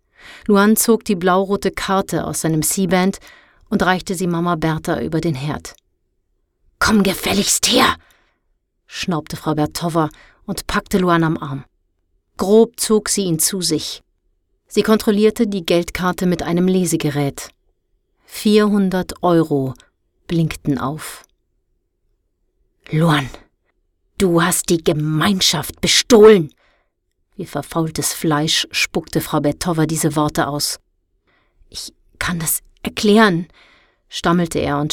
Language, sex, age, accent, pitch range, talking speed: German, female, 30-49, German, 150-205 Hz, 110 wpm